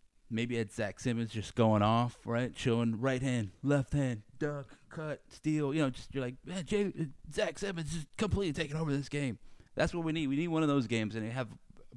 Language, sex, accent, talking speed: English, male, American, 230 wpm